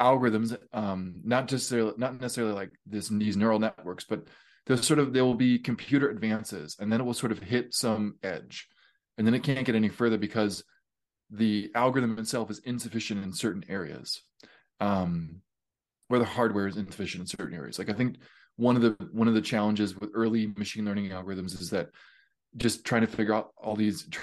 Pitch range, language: 105-120 Hz, English